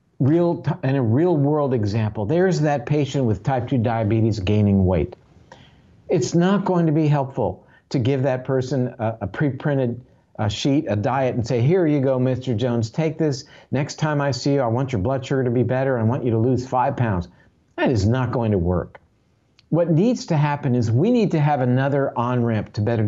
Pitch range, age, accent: 110-145 Hz, 50-69, American